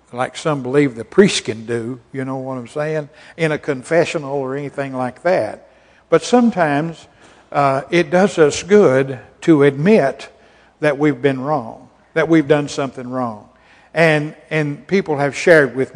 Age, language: 60-79, English